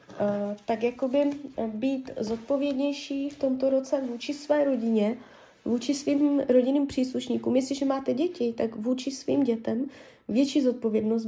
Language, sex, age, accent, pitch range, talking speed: Czech, female, 20-39, native, 225-270 Hz, 120 wpm